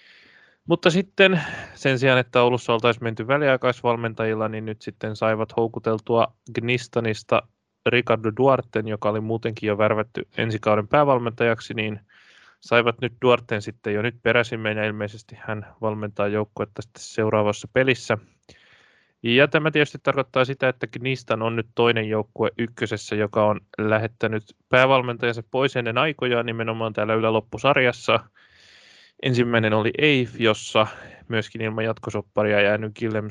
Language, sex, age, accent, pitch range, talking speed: Finnish, male, 20-39, native, 110-125 Hz, 130 wpm